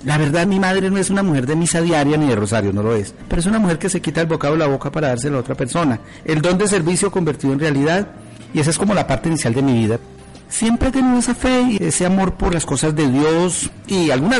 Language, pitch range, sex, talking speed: Spanish, 130-175 Hz, male, 275 wpm